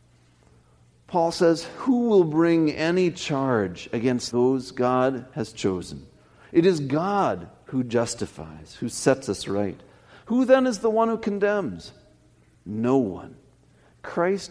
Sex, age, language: male, 50-69, English